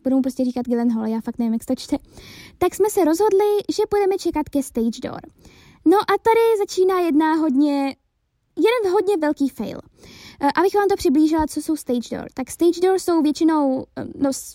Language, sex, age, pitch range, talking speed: Czech, female, 20-39, 245-315 Hz, 175 wpm